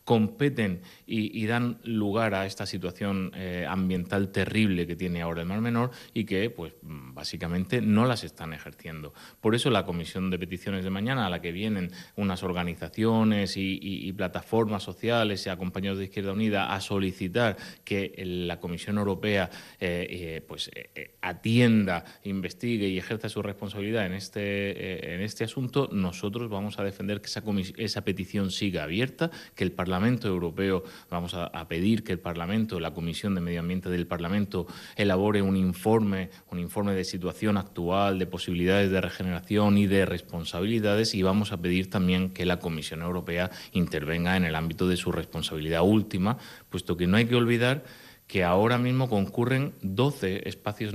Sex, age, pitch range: male, 30-49, 90-105 Hz